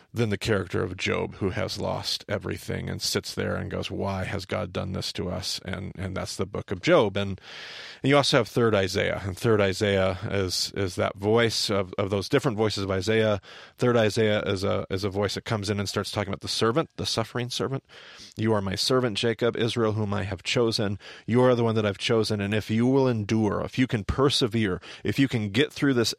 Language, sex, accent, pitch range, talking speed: English, male, American, 100-120 Hz, 230 wpm